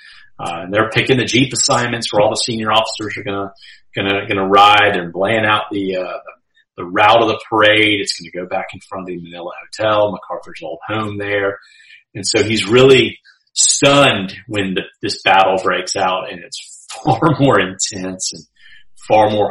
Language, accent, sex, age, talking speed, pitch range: English, American, male, 30-49, 190 wpm, 95-115 Hz